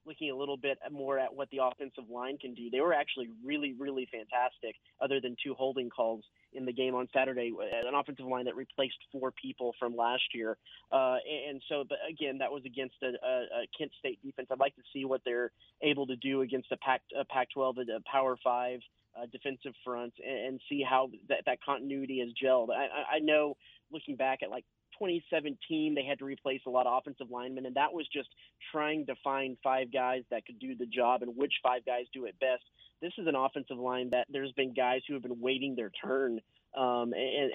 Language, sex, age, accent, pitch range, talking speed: English, male, 30-49, American, 125-140 Hz, 215 wpm